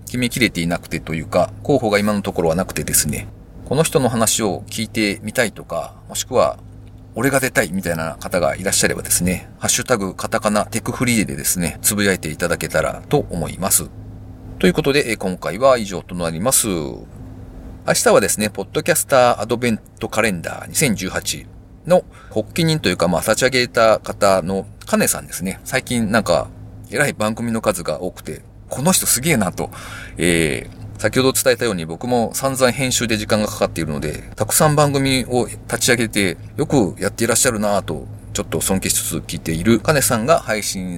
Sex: male